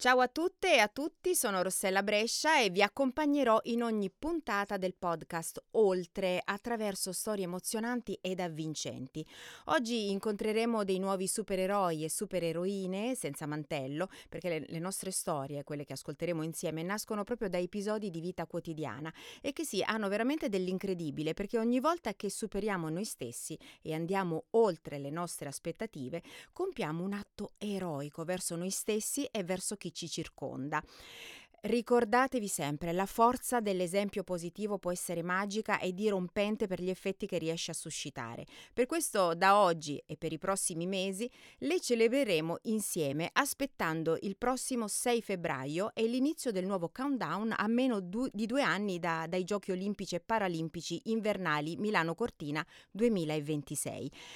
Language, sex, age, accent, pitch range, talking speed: Italian, female, 30-49, native, 170-225 Hz, 145 wpm